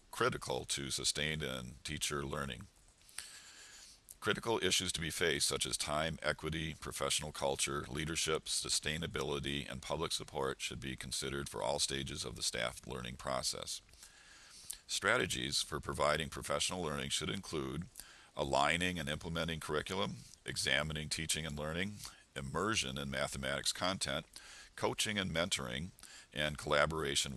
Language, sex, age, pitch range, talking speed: English, male, 50-69, 70-85 Hz, 125 wpm